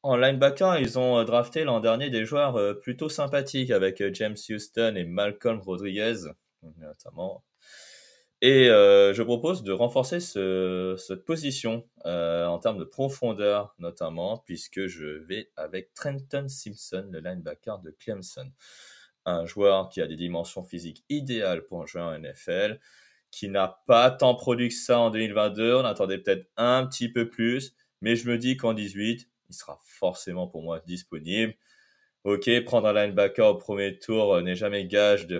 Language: French